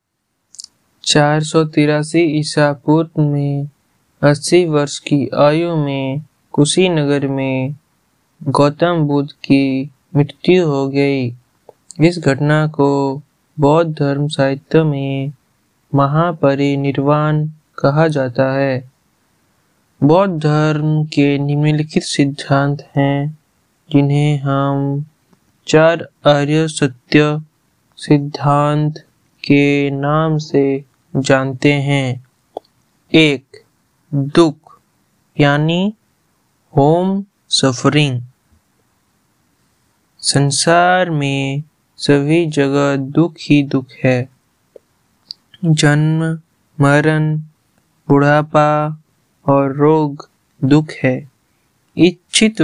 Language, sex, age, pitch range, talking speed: Hindi, male, 20-39, 140-155 Hz, 75 wpm